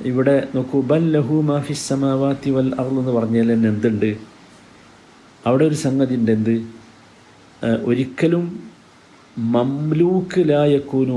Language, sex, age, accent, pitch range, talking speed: Malayalam, male, 50-69, native, 115-155 Hz, 95 wpm